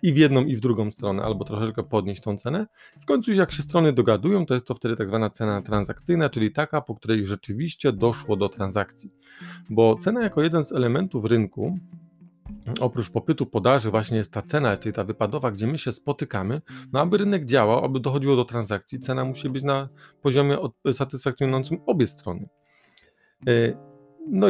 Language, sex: Polish, male